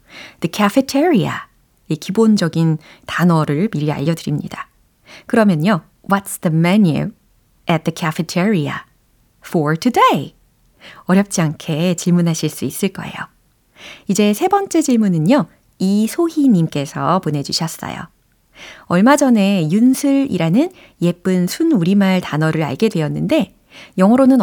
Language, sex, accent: Korean, female, native